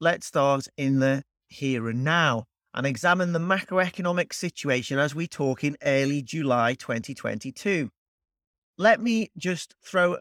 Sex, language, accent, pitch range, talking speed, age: male, English, British, 130-175 Hz, 135 wpm, 40-59